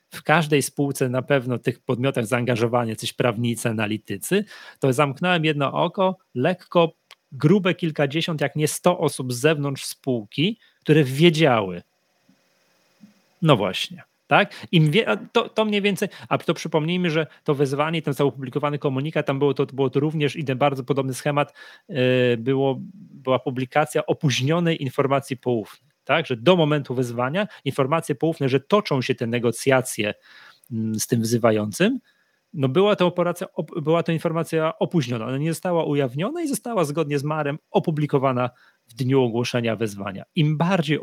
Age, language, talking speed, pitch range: 30-49, Polish, 150 wpm, 125-165 Hz